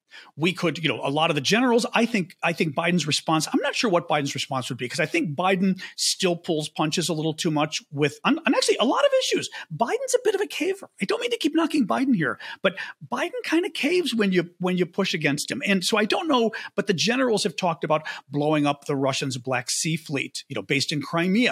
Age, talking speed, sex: 40-59, 255 wpm, male